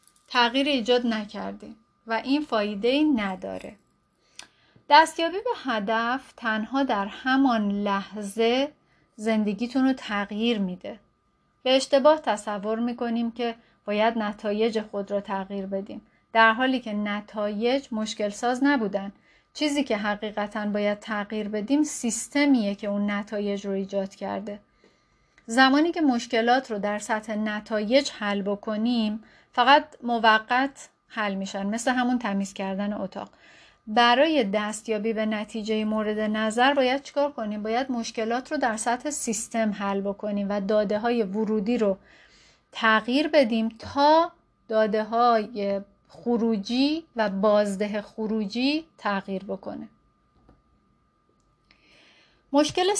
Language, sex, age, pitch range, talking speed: Persian, female, 40-59, 210-255 Hz, 115 wpm